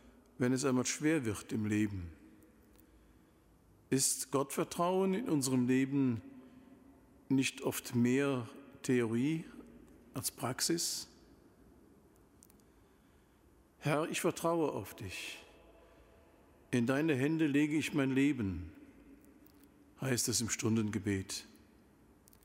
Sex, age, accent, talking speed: male, 50-69, German, 90 wpm